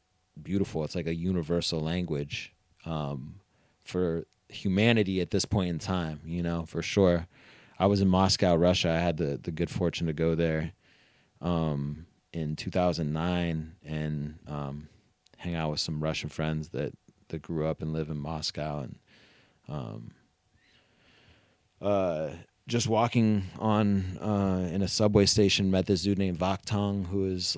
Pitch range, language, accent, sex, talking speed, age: 80-95 Hz, English, American, male, 155 wpm, 30-49